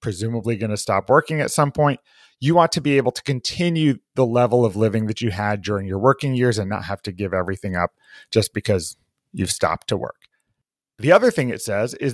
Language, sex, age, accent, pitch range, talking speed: English, male, 30-49, American, 110-150 Hz, 220 wpm